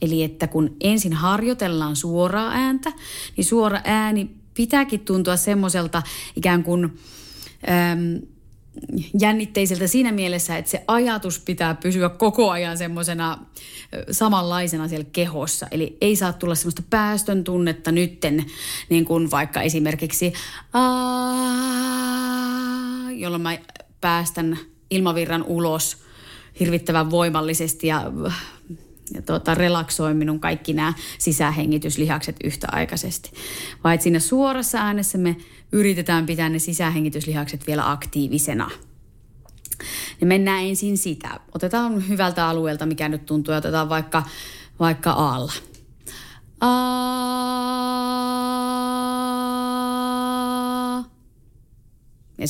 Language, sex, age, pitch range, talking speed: Finnish, female, 30-49, 155-220 Hz, 95 wpm